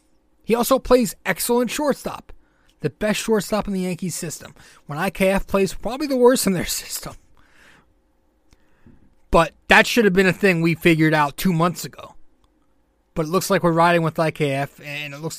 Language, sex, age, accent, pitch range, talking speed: English, male, 30-49, American, 155-210 Hz, 175 wpm